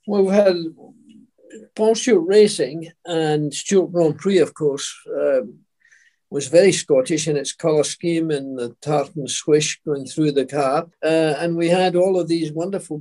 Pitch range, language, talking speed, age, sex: 150-180 Hz, English, 165 wpm, 50-69, male